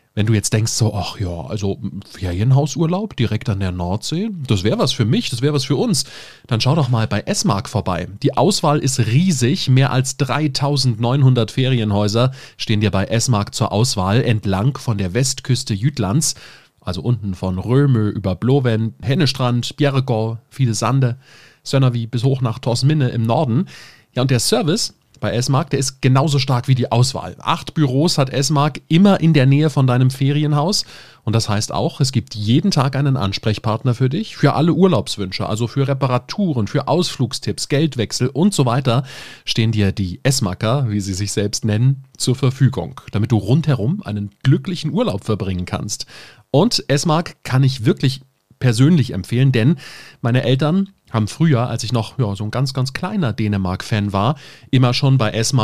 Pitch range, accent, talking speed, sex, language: 110-140 Hz, German, 175 wpm, male, German